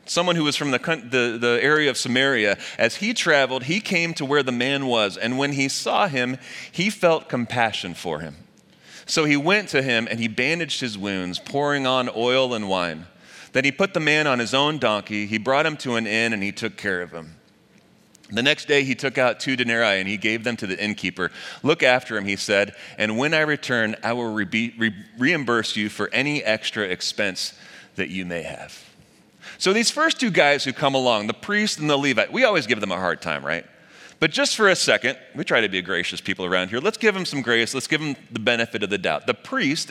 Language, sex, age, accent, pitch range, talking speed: English, male, 30-49, American, 110-150 Hz, 230 wpm